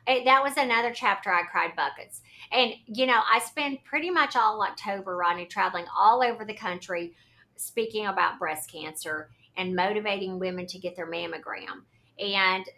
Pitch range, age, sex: 180-240 Hz, 50-69, female